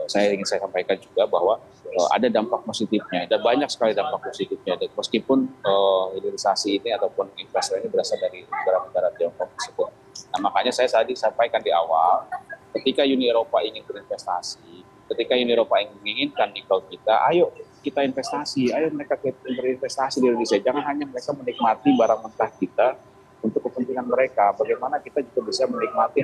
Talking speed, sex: 160 wpm, male